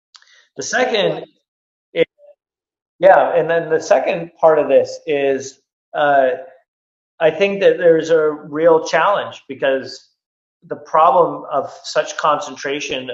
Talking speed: 120 wpm